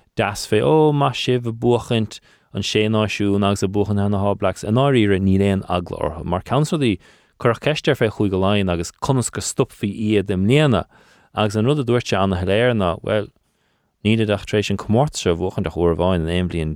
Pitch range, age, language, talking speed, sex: 90-110 Hz, 30-49, English, 205 wpm, male